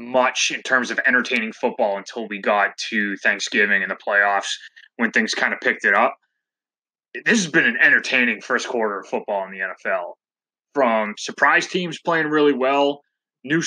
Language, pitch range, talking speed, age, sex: English, 110-140 Hz, 175 wpm, 20-39, male